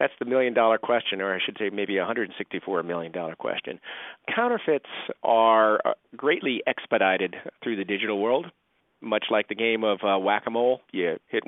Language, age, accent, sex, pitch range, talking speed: English, 40-59, American, male, 95-120 Hz, 150 wpm